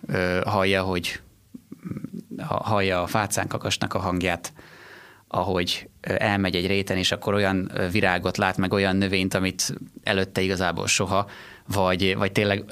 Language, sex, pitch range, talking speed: Hungarian, male, 95-110 Hz, 125 wpm